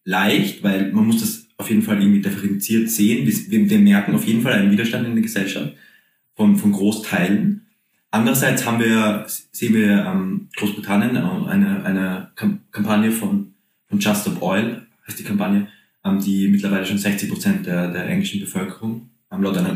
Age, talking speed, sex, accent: 20-39, 160 wpm, male, German